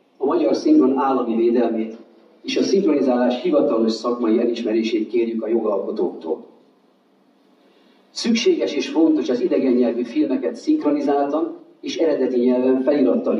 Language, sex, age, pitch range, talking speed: Hungarian, male, 40-59, 115-150 Hz, 105 wpm